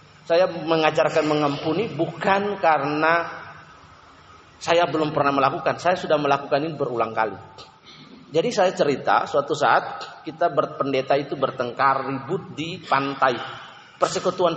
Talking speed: 115 wpm